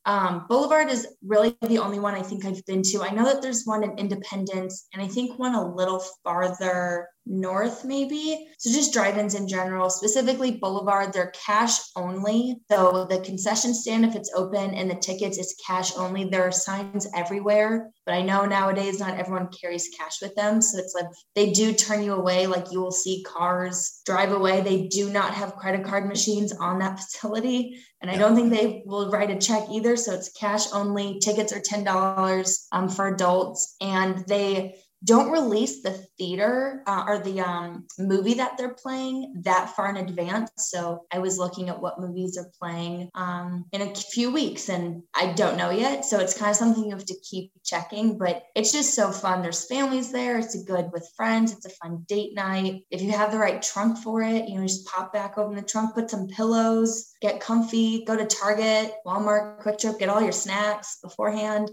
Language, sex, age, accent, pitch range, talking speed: English, female, 20-39, American, 185-220 Hz, 200 wpm